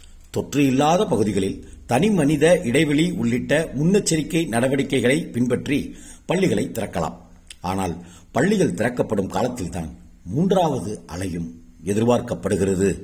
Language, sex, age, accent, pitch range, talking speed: Tamil, male, 50-69, native, 85-125 Hz, 85 wpm